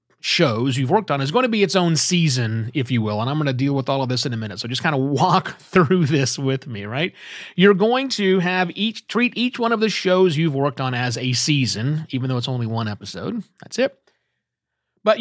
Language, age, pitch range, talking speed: English, 30-49, 140-210 Hz, 245 wpm